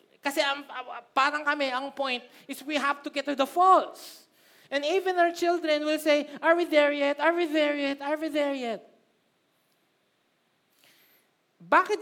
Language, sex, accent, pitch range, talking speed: Filipino, male, native, 275-335 Hz, 165 wpm